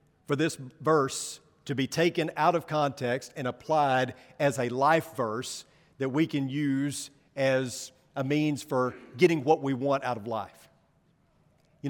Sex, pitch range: male, 140-200 Hz